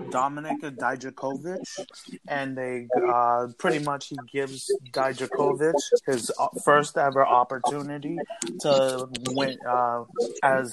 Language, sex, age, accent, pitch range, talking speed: English, male, 30-49, American, 130-155 Hz, 100 wpm